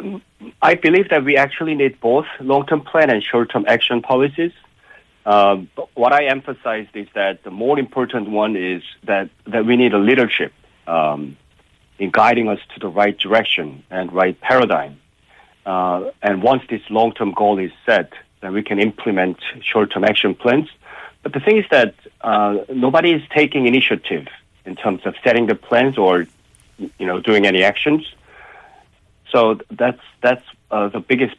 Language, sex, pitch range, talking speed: English, male, 95-130 Hz, 160 wpm